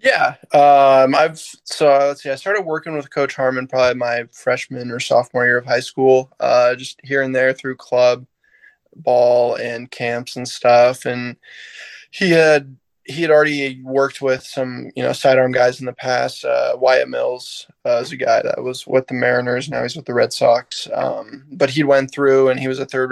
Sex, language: male, English